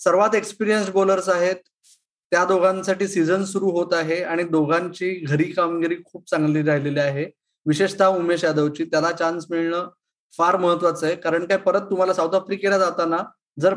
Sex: male